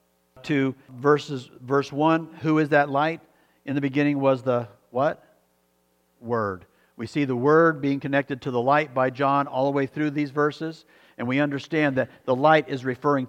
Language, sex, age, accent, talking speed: English, male, 50-69, American, 180 wpm